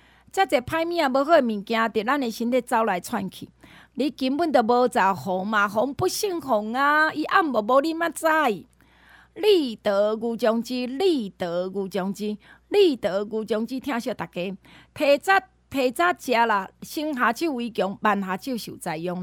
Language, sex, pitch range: Chinese, female, 210-285 Hz